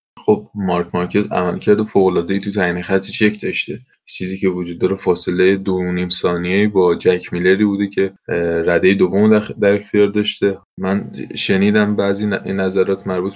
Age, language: 20-39, Persian